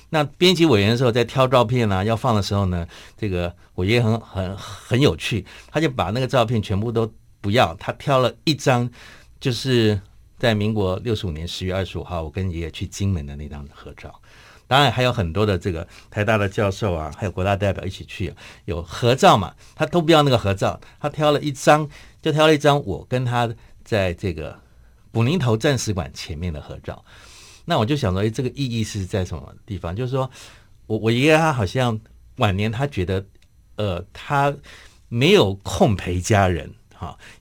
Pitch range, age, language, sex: 95-120 Hz, 50-69, Chinese, male